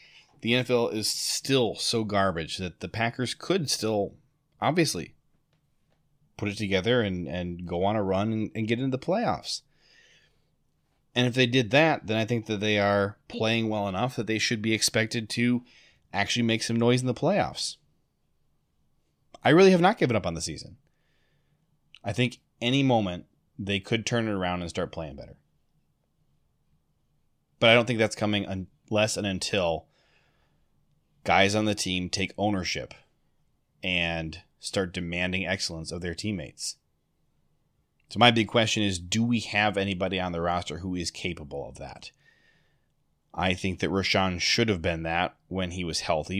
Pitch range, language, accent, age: 90-115 Hz, English, American, 30-49